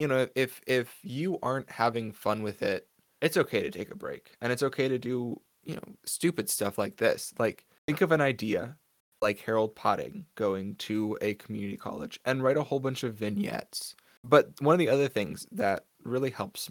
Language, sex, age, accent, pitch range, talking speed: English, male, 20-39, American, 105-130 Hz, 200 wpm